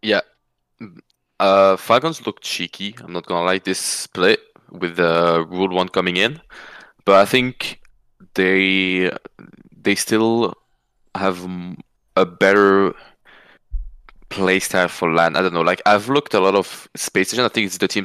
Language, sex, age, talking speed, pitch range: English, male, 20-39, 155 wpm, 90-110 Hz